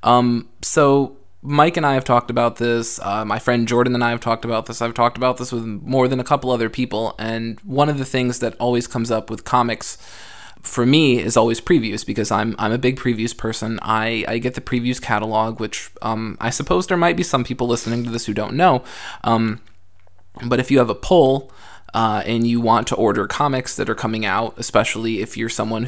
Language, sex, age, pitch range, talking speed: English, male, 20-39, 105-125 Hz, 225 wpm